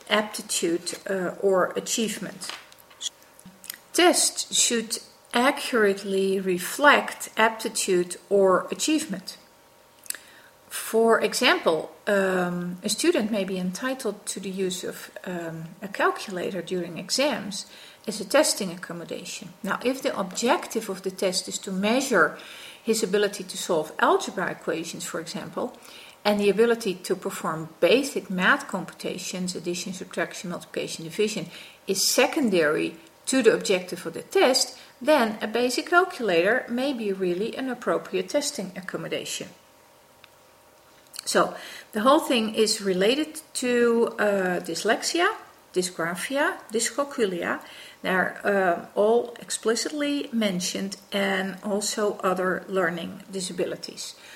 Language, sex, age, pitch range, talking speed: English, female, 50-69, 185-240 Hz, 115 wpm